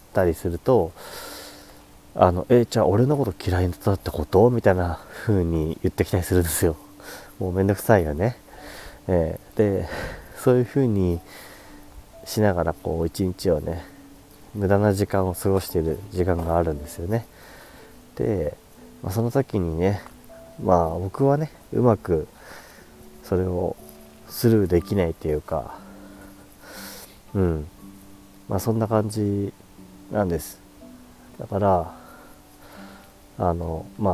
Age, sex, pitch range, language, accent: 30-49, male, 90-110 Hz, Japanese, native